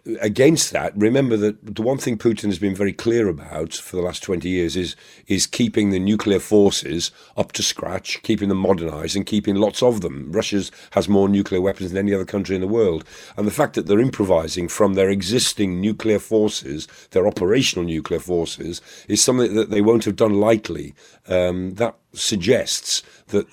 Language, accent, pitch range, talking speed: English, British, 90-105 Hz, 190 wpm